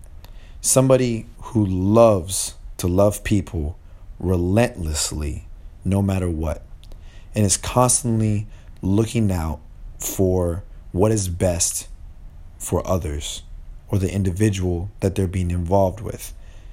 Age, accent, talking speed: 30-49, American, 105 wpm